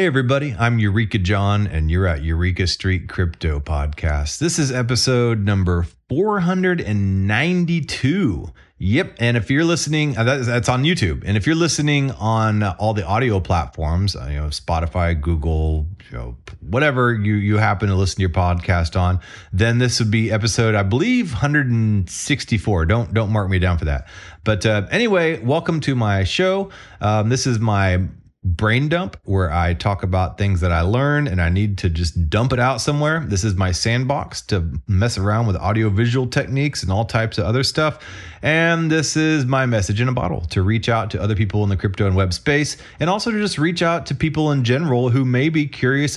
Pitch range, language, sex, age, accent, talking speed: 95-140 Hz, English, male, 30-49, American, 190 wpm